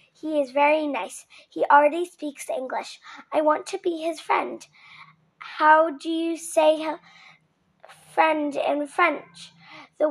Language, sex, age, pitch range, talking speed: English, female, 10-29, 280-330 Hz, 130 wpm